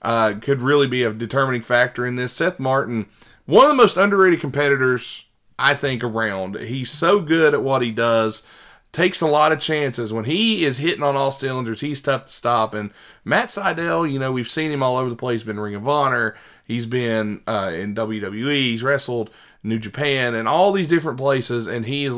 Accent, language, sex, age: American, English, male, 30-49